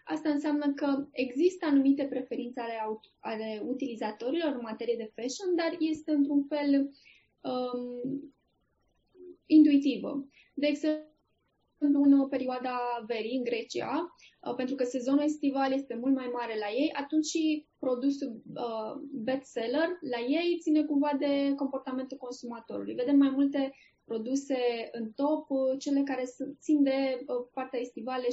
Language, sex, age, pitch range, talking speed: Romanian, female, 20-39, 235-285 Hz, 130 wpm